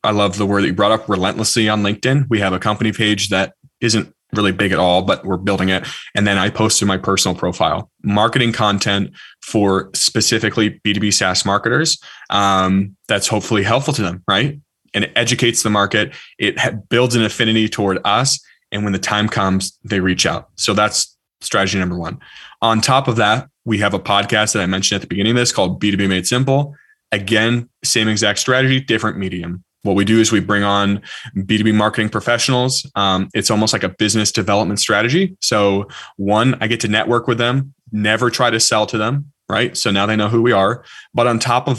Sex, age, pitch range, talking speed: male, 20-39, 100-120 Hz, 205 wpm